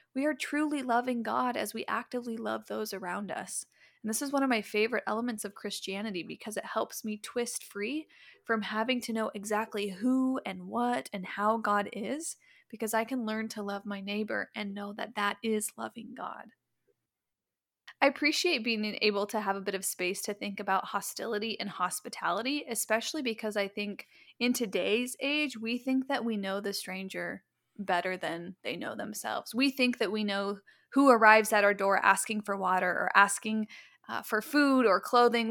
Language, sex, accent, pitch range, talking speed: English, female, American, 205-245 Hz, 185 wpm